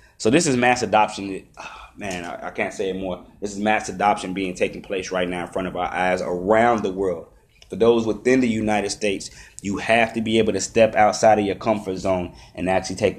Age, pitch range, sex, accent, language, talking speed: 20-39, 95-125 Hz, male, American, English, 225 wpm